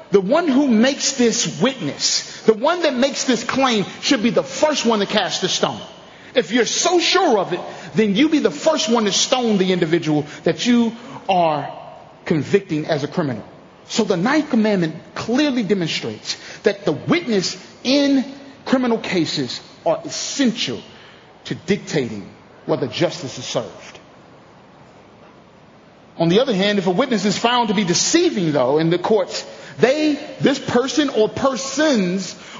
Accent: American